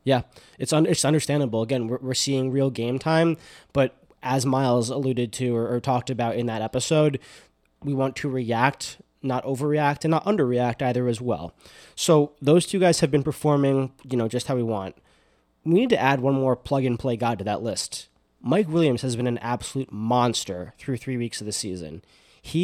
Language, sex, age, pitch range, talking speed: English, male, 20-39, 115-150 Hz, 200 wpm